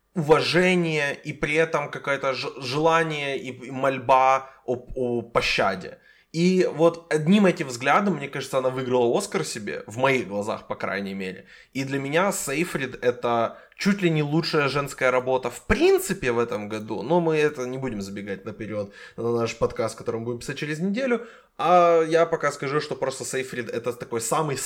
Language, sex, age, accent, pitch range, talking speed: Ukrainian, male, 20-39, native, 115-155 Hz, 170 wpm